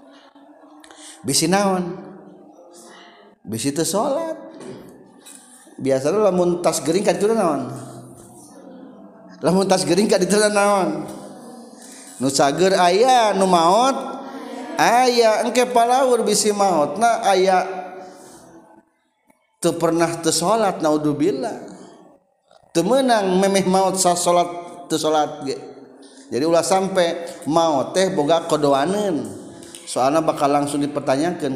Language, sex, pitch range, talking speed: Indonesian, male, 135-215 Hz, 95 wpm